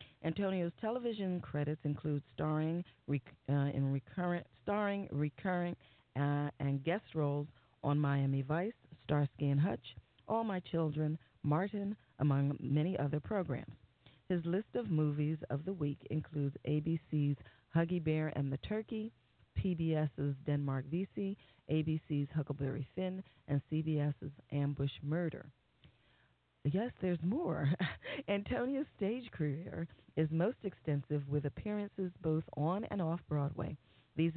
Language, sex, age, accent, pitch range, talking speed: English, female, 40-59, American, 140-175 Hz, 120 wpm